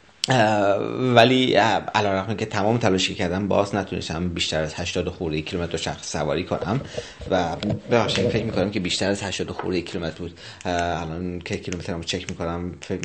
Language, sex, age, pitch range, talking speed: Persian, male, 30-49, 85-110 Hz, 175 wpm